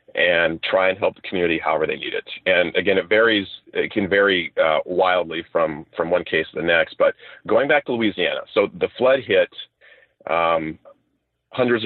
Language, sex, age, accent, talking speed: English, male, 40-59, American, 185 wpm